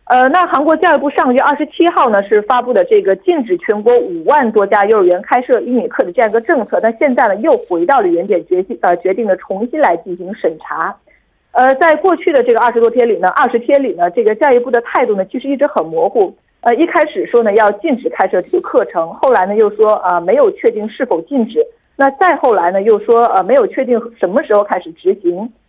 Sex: female